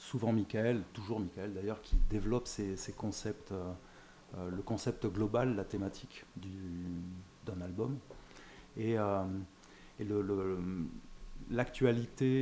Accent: French